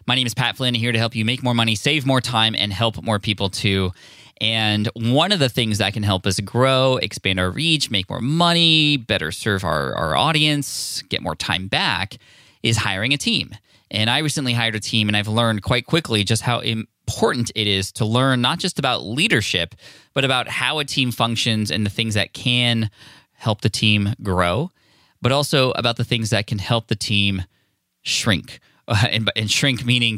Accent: American